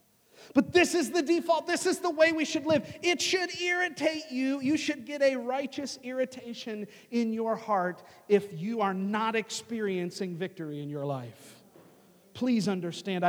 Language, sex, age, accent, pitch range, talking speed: English, male, 40-59, American, 175-245 Hz, 165 wpm